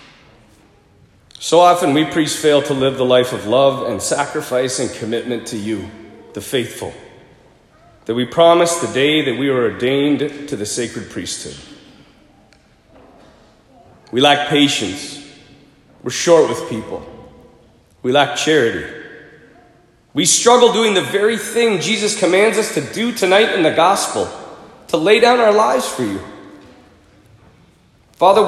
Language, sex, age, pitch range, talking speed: English, male, 40-59, 130-170 Hz, 135 wpm